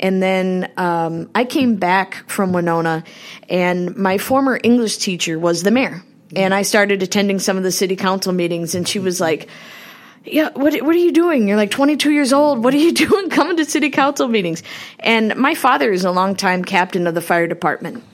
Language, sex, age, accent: English, female, 20-39, American